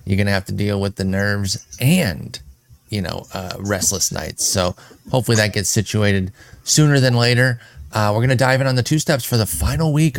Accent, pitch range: American, 100-130 Hz